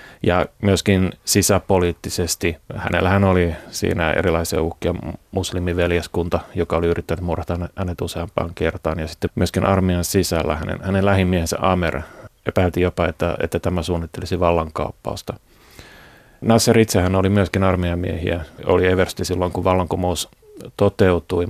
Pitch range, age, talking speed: 85-100 Hz, 30-49, 120 wpm